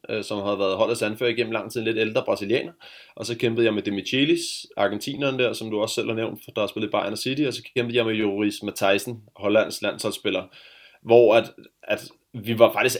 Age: 20-39